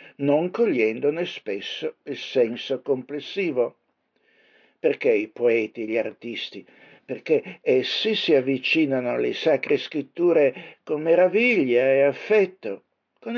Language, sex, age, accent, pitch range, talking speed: Italian, male, 60-79, native, 135-225 Hz, 105 wpm